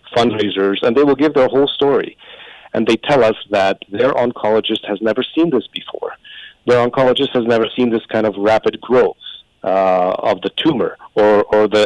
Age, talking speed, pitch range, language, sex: 50-69, 185 wpm, 105-125 Hz, English, male